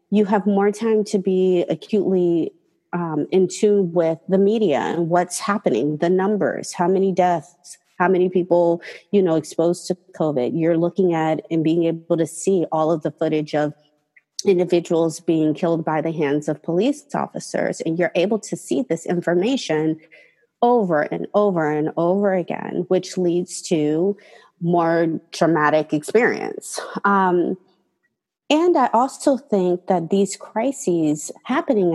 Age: 30-49